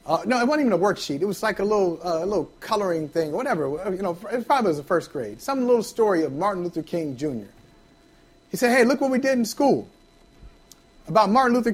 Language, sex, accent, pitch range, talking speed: English, male, American, 200-280 Hz, 240 wpm